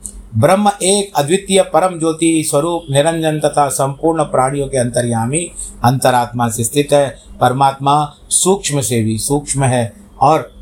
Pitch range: 110-145 Hz